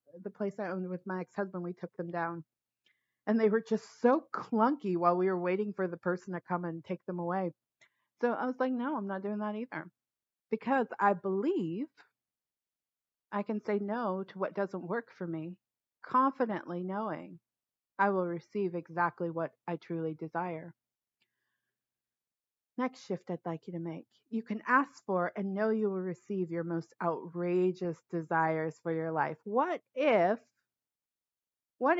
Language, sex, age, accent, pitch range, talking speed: English, female, 40-59, American, 170-210 Hz, 165 wpm